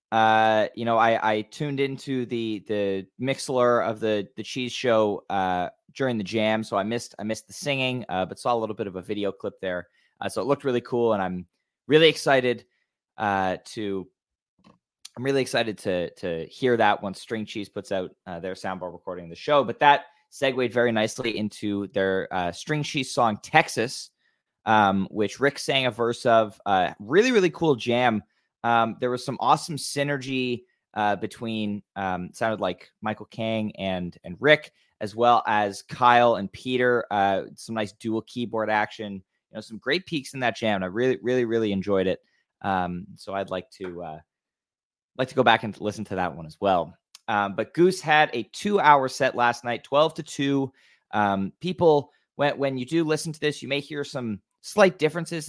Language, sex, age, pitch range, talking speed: English, male, 20-39, 105-135 Hz, 195 wpm